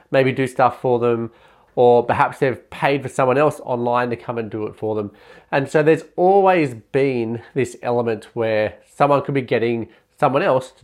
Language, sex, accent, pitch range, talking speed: English, male, Australian, 120-150 Hz, 195 wpm